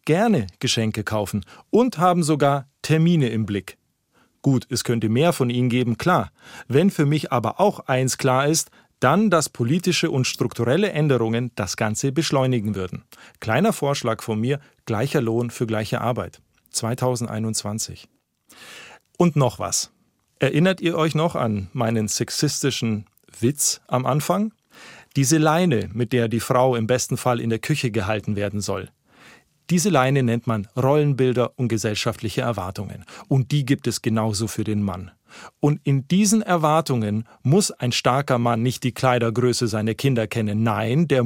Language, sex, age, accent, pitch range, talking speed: German, male, 40-59, German, 115-150 Hz, 155 wpm